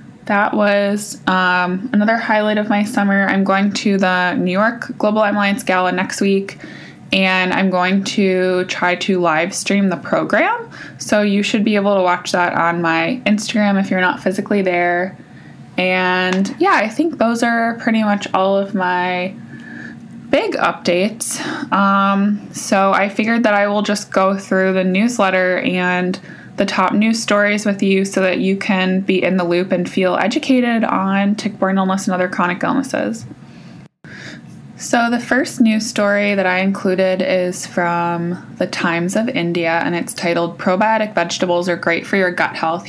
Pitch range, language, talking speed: 180-210 Hz, English, 170 wpm